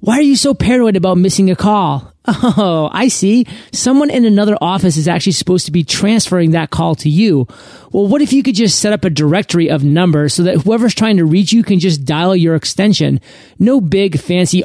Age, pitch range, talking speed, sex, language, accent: 30-49, 160-215 Hz, 215 wpm, male, English, American